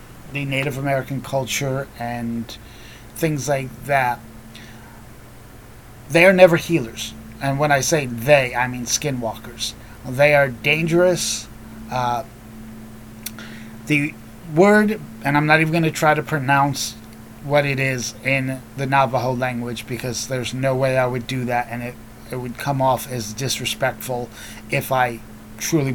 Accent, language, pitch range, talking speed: American, English, 110-140 Hz, 140 wpm